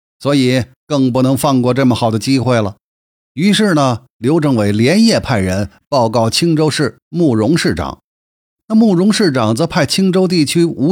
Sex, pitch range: male, 120-175 Hz